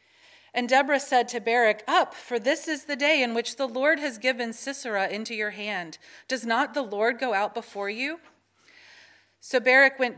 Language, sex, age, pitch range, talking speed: English, female, 40-59, 190-255 Hz, 190 wpm